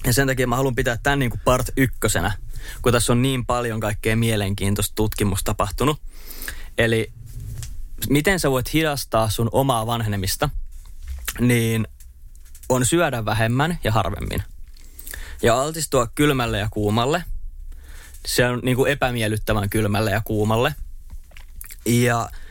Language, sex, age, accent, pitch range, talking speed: Finnish, male, 20-39, native, 95-130 Hz, 130 wpm